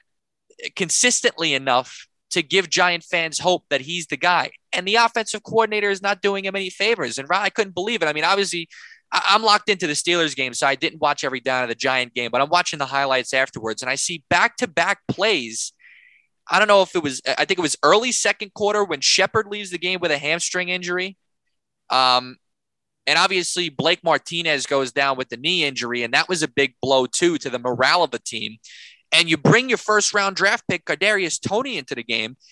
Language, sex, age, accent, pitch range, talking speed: English, male, 20-39, American, 150-210 Hz, 215 wpm